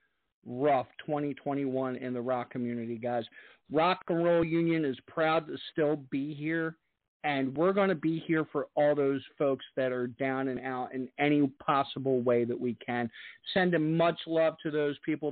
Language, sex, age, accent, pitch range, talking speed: English, male, 50-69, American, 140-190 Hz, 175 wpm